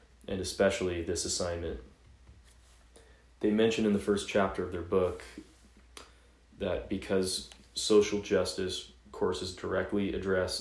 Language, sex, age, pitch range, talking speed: English, male, 20-39, 80-95 Hz, 115 wpm